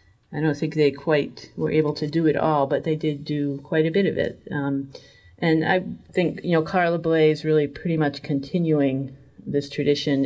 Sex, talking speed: female, 205 wpm